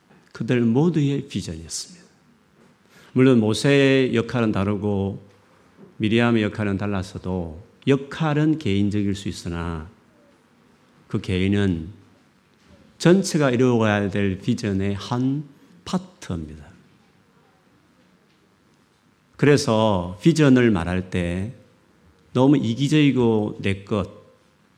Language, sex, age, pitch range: Korean, male, 40-59, 100-135 Hz